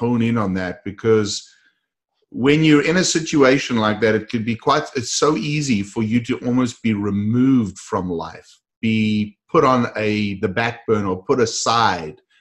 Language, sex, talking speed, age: English, male, 175 wpm, 30-49